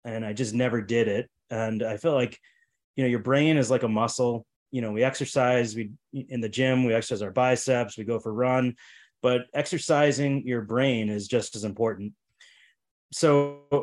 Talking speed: 185 wpm